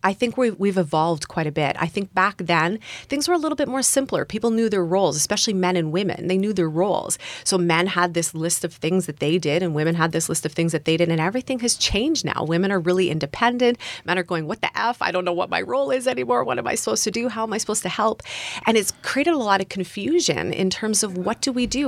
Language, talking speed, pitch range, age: English, 275 wpm, 170-220 Hz, 30-49